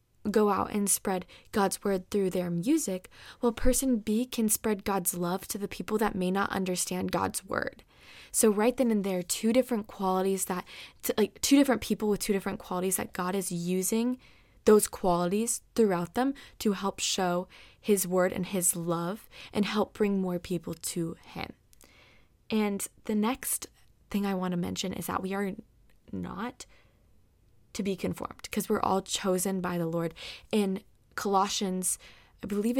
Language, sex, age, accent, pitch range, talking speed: English, female, 20-39, American, 185-225 Hz, 170 wpm